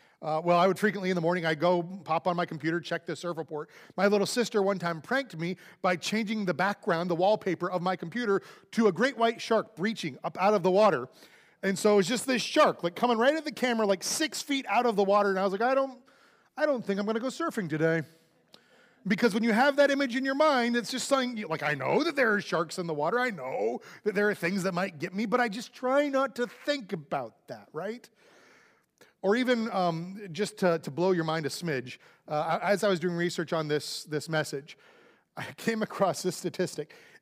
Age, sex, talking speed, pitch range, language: 30-49, male, 240 wpm, 160-230 Hz, English